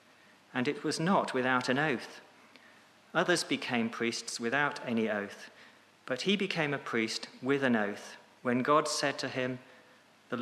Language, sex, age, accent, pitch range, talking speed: English, male, 40-59, British, 115-145 Hz, 155 wpm